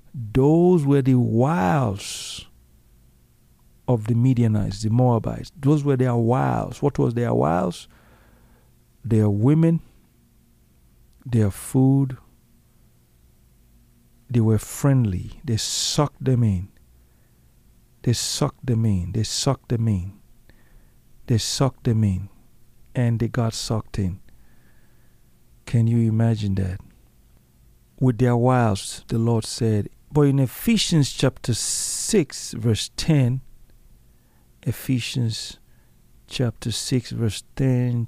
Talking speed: 105 wpm